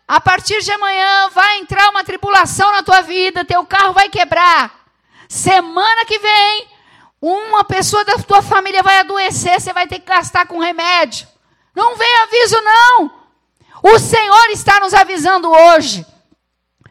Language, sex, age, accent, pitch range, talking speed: Portuguese, female, 50-69, Brazilian, 305-375 Hz, 150 wpm